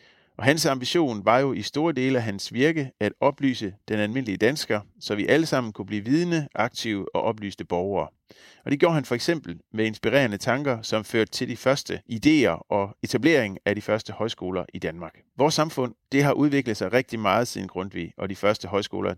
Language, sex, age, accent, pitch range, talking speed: Danish, male, 30-49, native, 100-140 Hz, 200 wpm